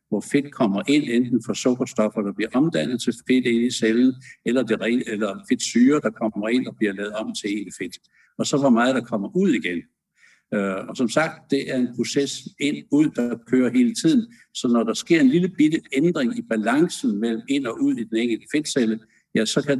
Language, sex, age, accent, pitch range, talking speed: Danish, male, 60-79, native, 110-150 Hz, 220 wpm